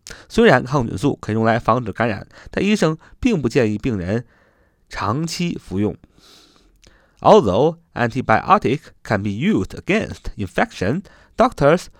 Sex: male